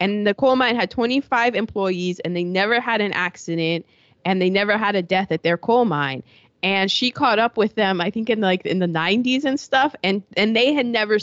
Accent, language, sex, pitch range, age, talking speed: American, English, female, 180-245 Hz, 20-39, 230 wpm